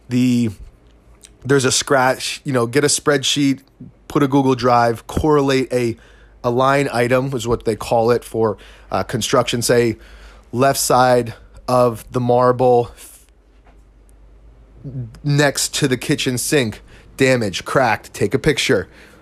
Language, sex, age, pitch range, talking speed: English, male, 30-49, 120-140 Hz, 130 wpm